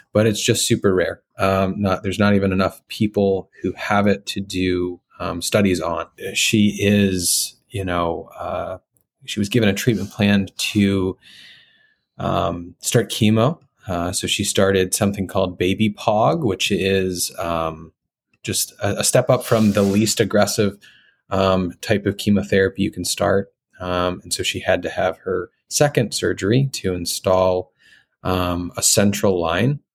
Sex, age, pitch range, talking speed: male, 20-39, 90-105 Hz, 155 wpm